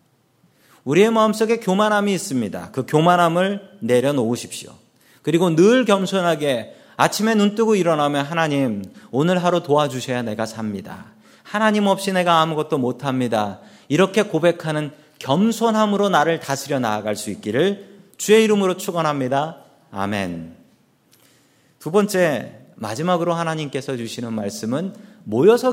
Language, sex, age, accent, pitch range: Korean, male, 40-59, native, 140-205 Hz